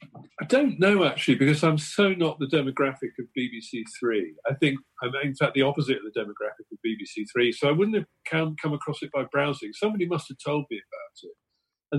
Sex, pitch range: male, 110-155 Hz